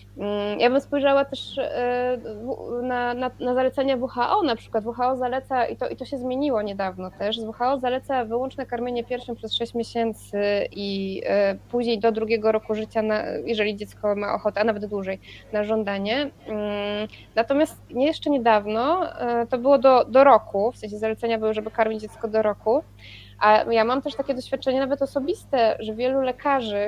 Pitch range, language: 215-270 Hz, Polish